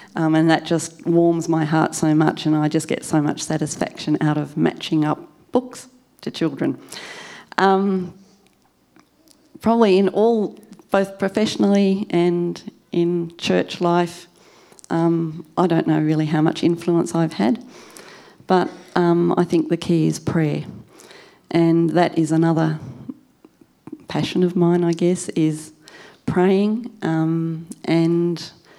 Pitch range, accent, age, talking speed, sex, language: 155-175 Hz, Australian, 40-59, 135 wpm, female, English